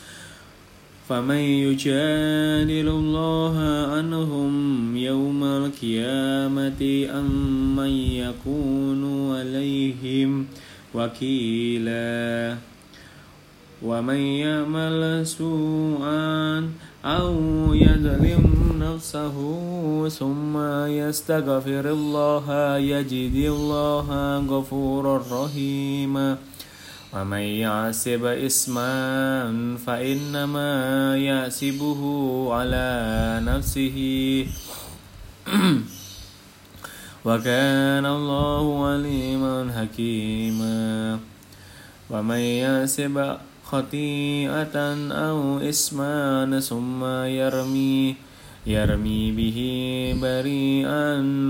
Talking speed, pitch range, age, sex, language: 55 wpm, 120-145 Hz, 20-39, male, Indonesian